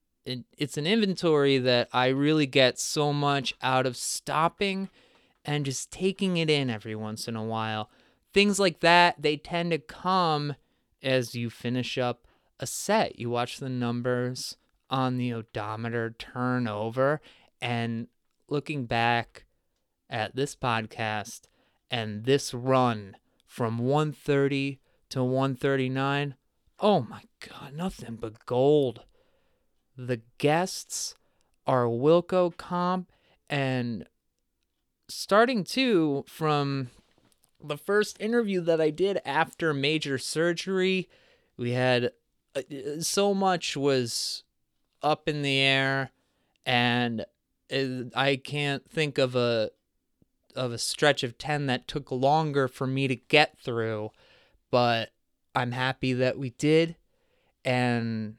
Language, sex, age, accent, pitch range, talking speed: English, male, 30-49, American, 120-150 Hz, 120 wpm